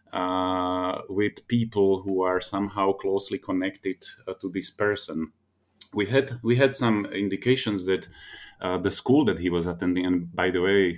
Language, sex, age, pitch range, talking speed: English, male, 30-49, 85-105 Hz, 165 wpm